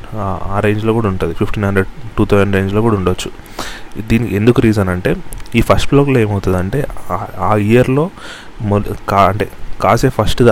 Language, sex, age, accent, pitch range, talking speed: Telugu, male, 30-49, native, 100-120 Hz, 155 wpm